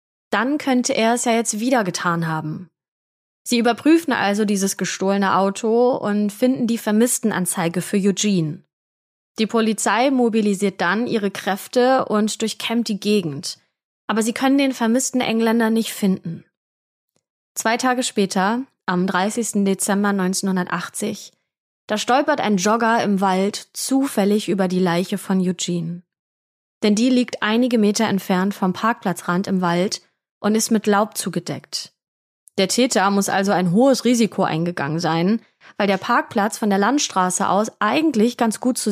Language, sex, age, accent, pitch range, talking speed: German, female, 20-39, German, 190-230 Hz, 145 wpm